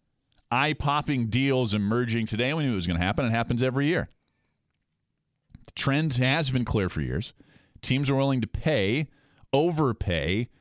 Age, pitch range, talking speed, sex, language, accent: 40-59, 120-165 Hz, 160 wpm, male, English, American